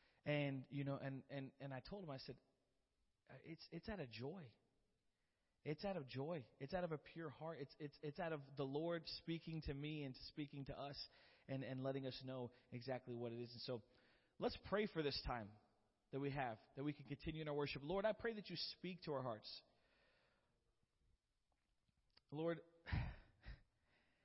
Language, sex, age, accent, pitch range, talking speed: English, male, 40-59, American, 110-145 Hz, 190 wpm